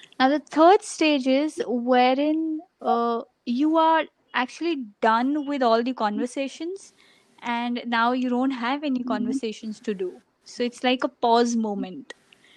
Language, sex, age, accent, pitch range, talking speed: English, female, 20-39, Indian, 240-295 Hz, 145 wpm